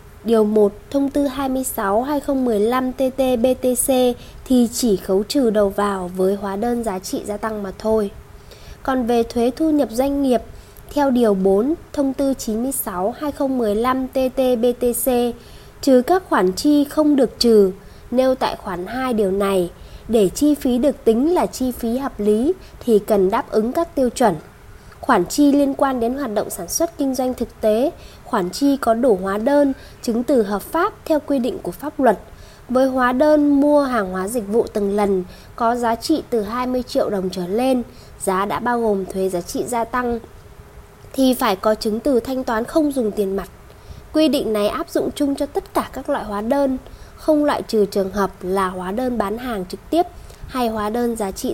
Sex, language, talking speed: female, Vietnamese, 185 wpm